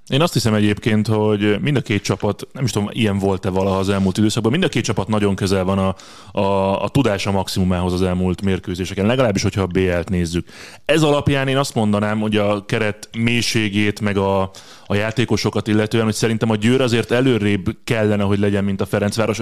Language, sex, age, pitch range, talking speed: Hungarian, male, 30-49, 100-115 Hz, 200 wpm